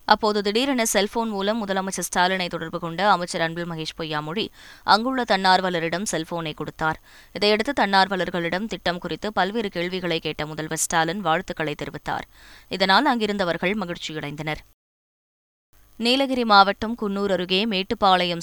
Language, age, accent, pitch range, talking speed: Tamil, 20-39, native, 165-200 Hz, 115 wpm